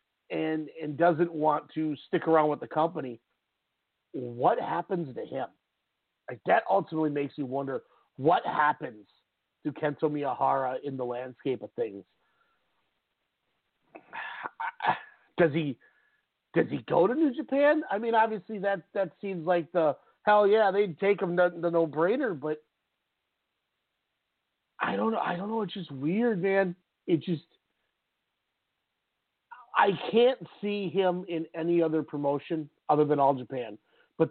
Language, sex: English, male